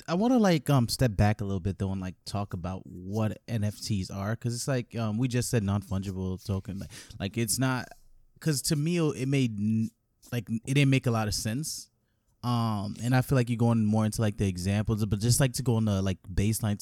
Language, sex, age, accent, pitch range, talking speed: English, male, 20-39, American, 100-120 Hz, 240 wpm